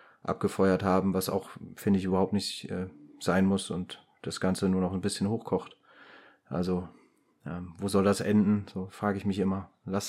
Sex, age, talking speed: male, 30-49, 185 wpm